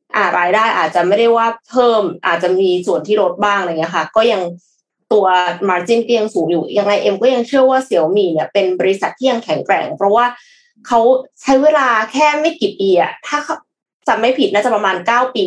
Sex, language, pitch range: female, Thai, 200-275 Hz